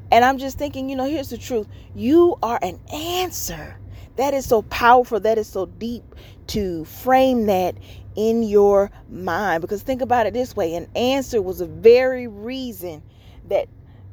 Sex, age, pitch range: female, 30-49, 200-260 Hz